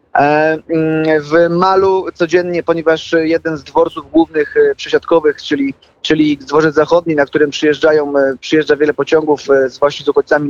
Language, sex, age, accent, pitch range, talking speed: Polish, male, 30-49, native, 155-175 Hz, 130 wpm